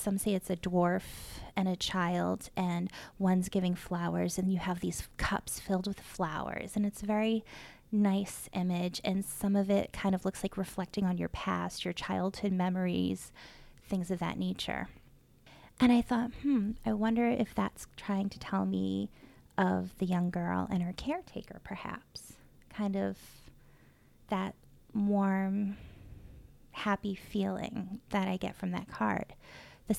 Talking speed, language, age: 155 wpm, English, 20-39